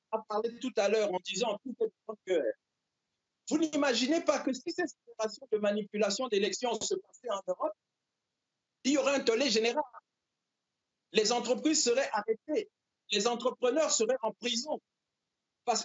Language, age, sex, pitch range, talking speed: French, 50-69, male, 210-290 Hz, 135 wpm